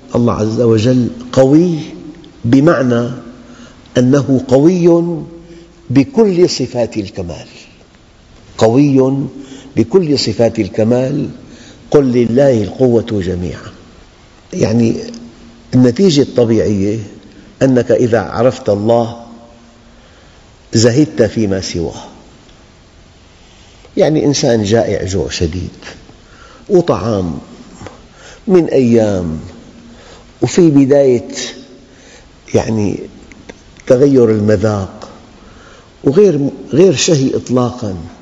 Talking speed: 70 wpm